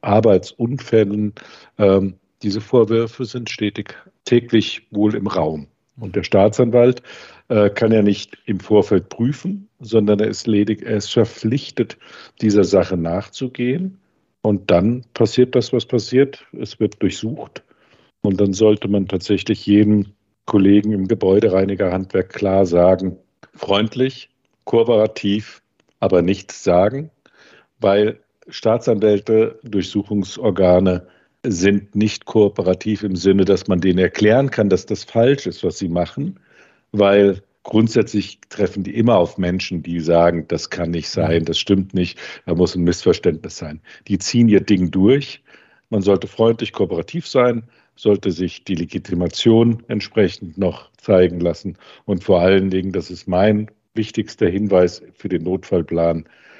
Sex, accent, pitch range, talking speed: male, German, 95-115 Hz, 135 wpm